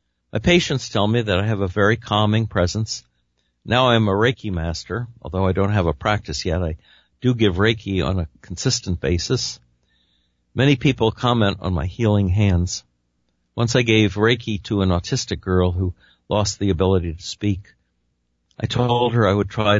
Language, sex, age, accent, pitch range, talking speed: English, male, 60-79, American, 80-110 Hz, 175 wpm